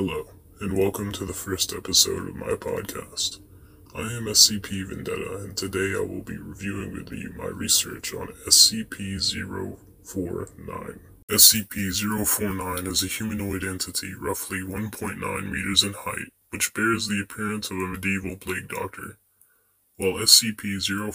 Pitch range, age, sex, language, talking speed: 95-105 Hz, 10-29, female, English, 135 wpm